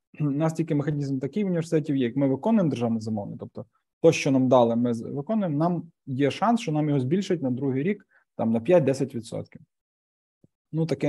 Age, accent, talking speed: 20-39, native, 180 wpm